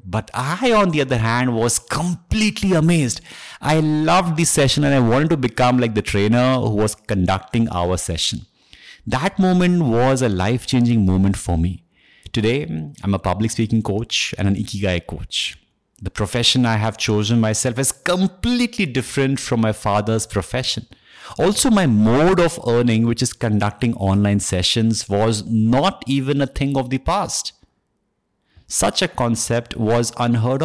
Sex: male